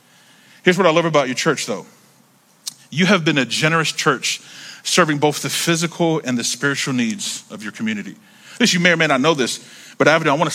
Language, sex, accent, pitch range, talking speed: English, male, American, 135-180 Hz, 230 wpm